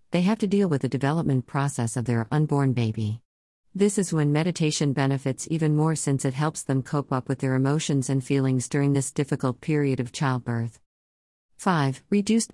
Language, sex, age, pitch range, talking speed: Swahili, female, 50-69, 130-155 Hz, 180 wpm